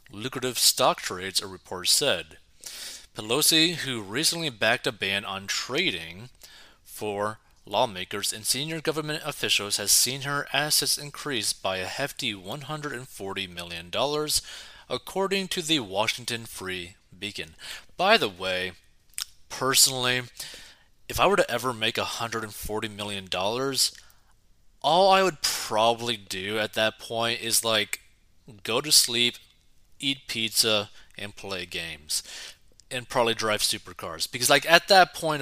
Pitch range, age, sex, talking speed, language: 100-145 Hz, 30-49, male, 125 wpm, English